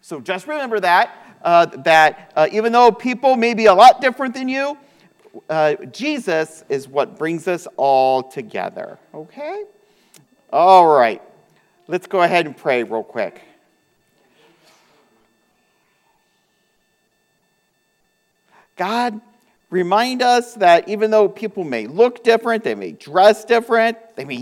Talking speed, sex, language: 125 wpm, male, English